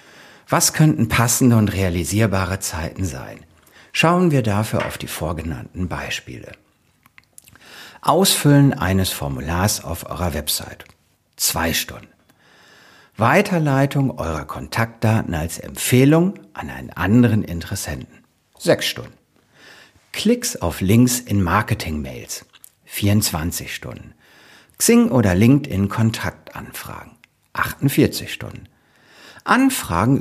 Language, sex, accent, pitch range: German, male, German, 95-145 Hz